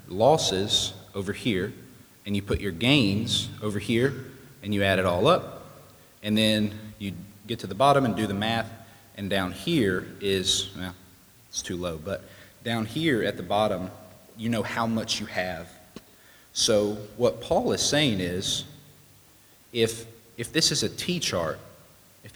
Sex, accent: male, American